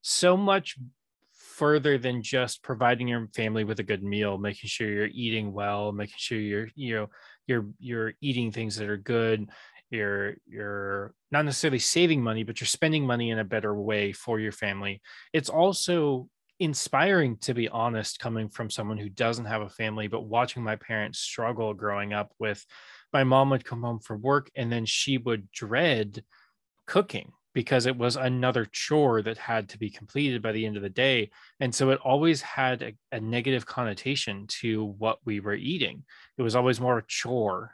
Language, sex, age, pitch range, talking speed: English, male, 20-39, 110-130 Hz, 185 wpm